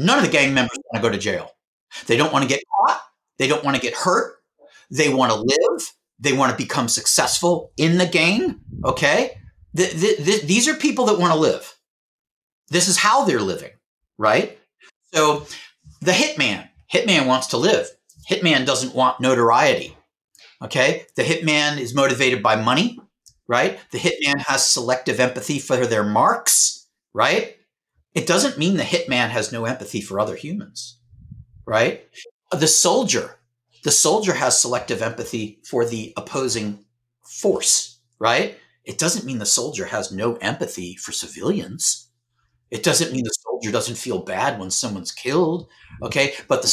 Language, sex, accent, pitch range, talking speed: English, male, American, 120-180 Hz, 160 wpm